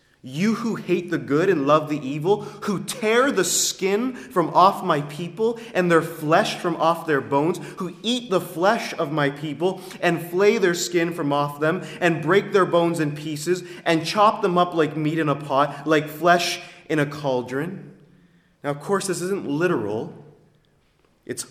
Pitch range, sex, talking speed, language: 145-190 Hz, male, 180 wpm, English